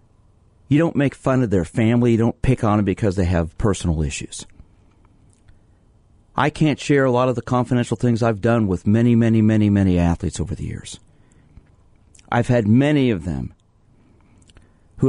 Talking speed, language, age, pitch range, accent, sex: 170 wpm, English, 50-69, 100-130 Hz, American, male